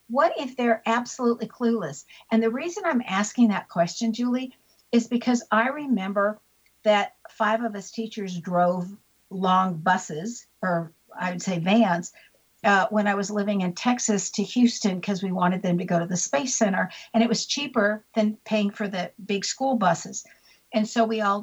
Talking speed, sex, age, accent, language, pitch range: 180 wpm, female, 60-79, American, English, 185-235 Hz